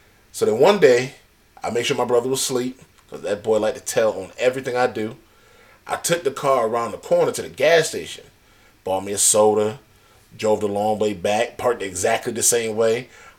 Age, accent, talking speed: 30-49, American, 210 wpm